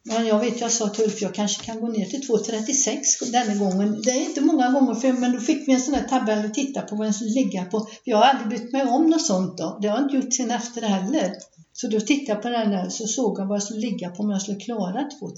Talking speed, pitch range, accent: 280 wpm, 195-230 Hz, native